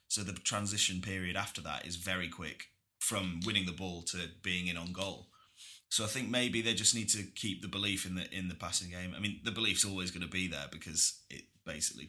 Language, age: English, 20-39